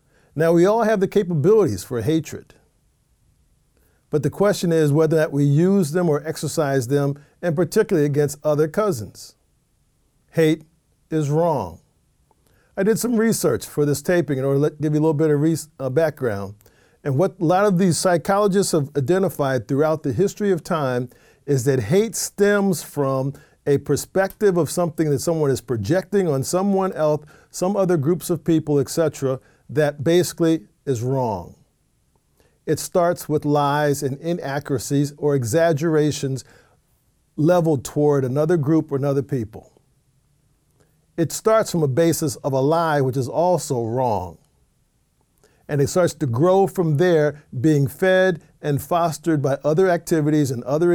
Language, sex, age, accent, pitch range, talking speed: English, male, 50-69, American, 140-175 Hz, 155 wpm